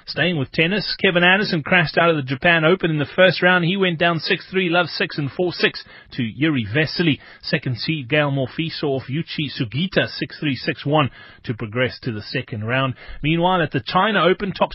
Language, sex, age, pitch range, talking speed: English, male, 30-49, 135-180 Hz, 185 wpm